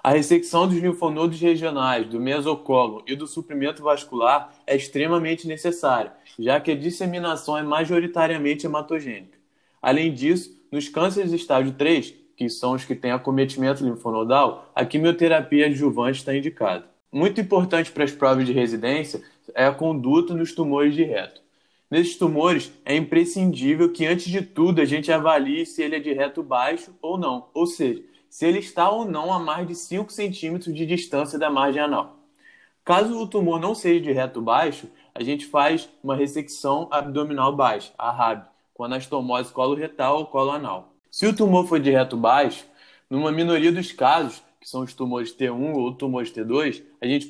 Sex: male